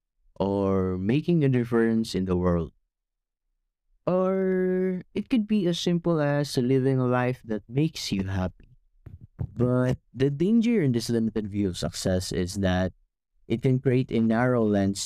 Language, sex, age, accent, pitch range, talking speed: English, male, 20-39, Filipino, 95-130 Hz, 150 wpm